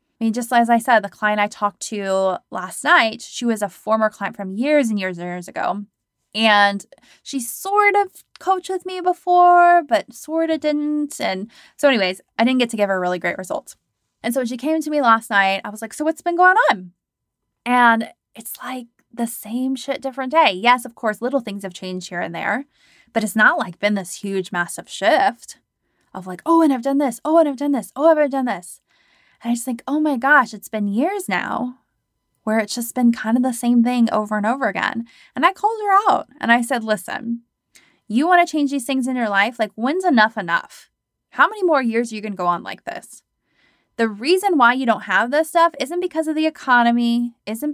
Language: English